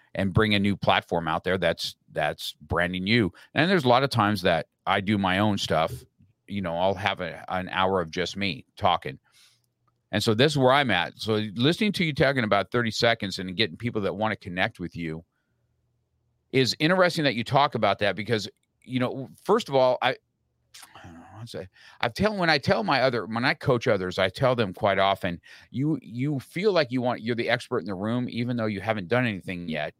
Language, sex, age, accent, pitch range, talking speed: English, male, 50-69, American, 100-125 Hz, 220 wpm